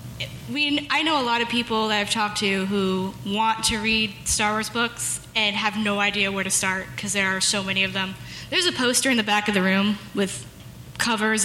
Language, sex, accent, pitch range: English, female, American, 195-235 Hz